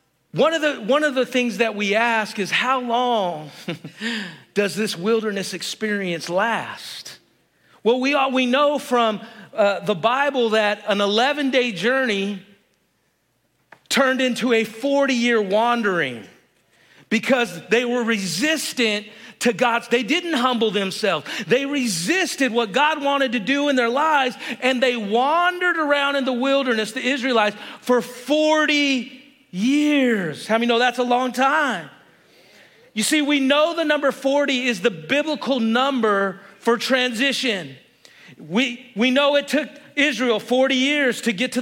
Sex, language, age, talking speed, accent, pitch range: male, English, 40-59, 145 wpm, American, 225-275 Hz